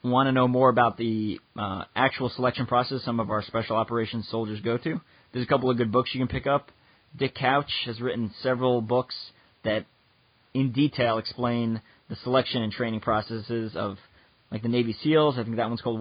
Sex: male